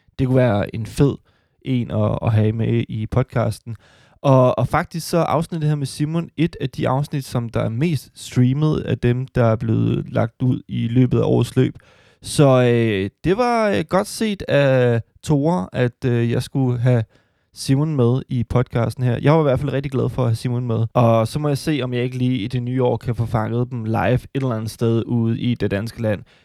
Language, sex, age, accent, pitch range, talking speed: Danish, male, 20-39, native, 115-140 Hz, 225 wpm